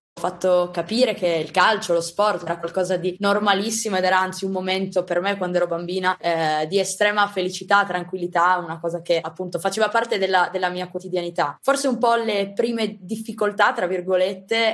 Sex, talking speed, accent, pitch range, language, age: female, 185 wpm, native, 180-205 Hz, Italian, 20-39